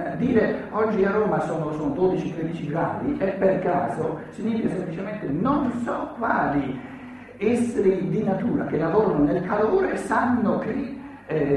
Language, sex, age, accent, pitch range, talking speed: Italian, male, 50-69, native, 140-215 Hz, 135 wpm